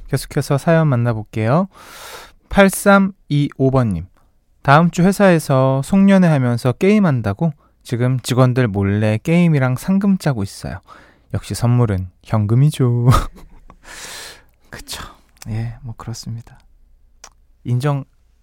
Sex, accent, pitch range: male, native, 115-155 Hz